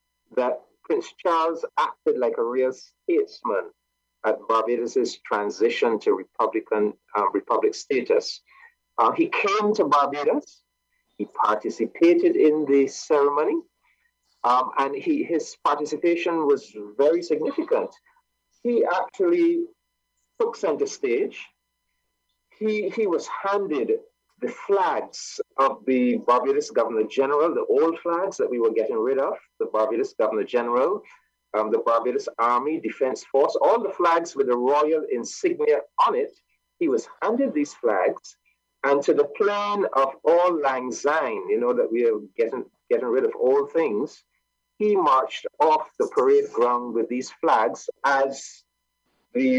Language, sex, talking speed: English, male, 135 wpm